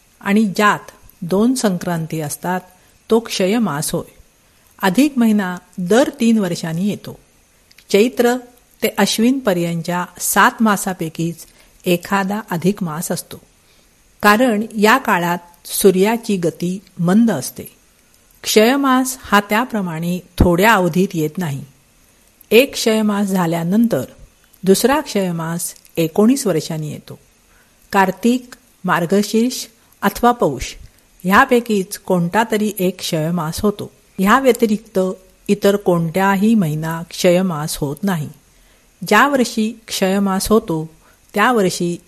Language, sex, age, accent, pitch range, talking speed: Marathi, female, 50-69, native, 180-225 Hz, 100 wpm